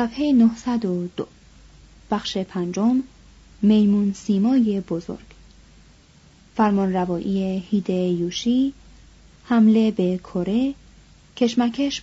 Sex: female